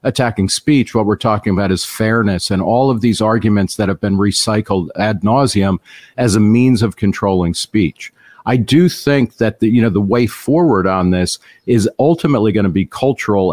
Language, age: English, 50-69